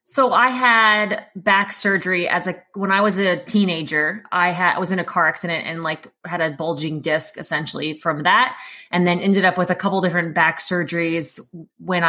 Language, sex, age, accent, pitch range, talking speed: English, female, 20-39, American, 170-200 Hz, 195 wpm